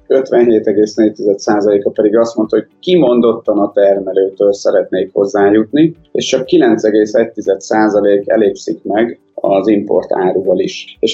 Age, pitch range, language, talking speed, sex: 30-49, 105-145 Hz, Hungarian, 110 wpm, male